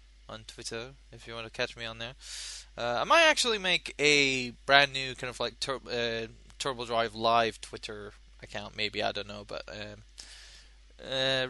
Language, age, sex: English, 20-39, male